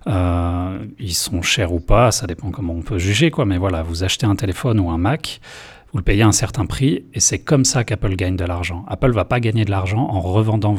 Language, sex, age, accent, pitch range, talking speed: French, male, 30-49, French, 90-115 Hz, 250 wpm